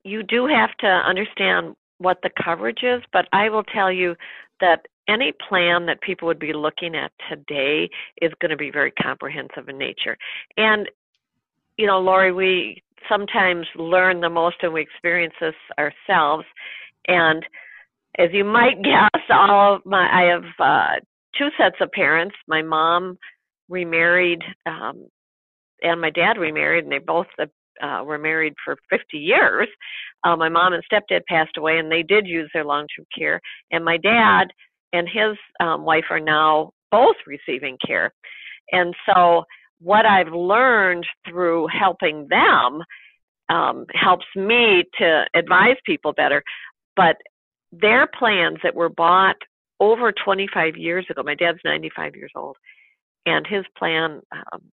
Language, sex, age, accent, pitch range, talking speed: English, female, 50-69, American, 165-200 Hz, 155 wpm